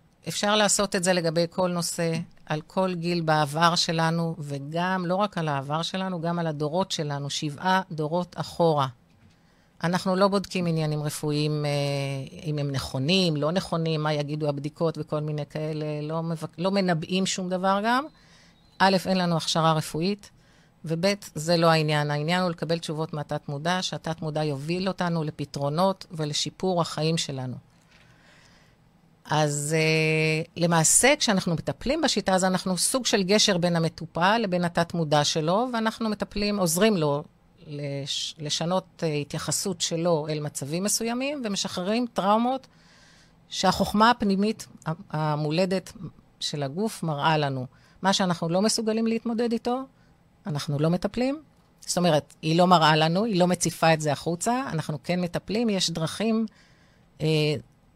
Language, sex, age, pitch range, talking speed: Hebrew, female, 40-59, 155-190 Hz, 140 wpm